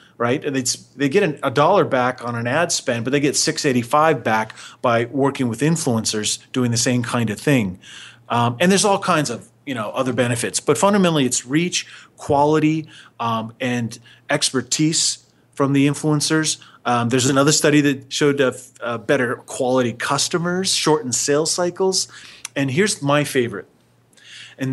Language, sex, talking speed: English, male, 165 wpm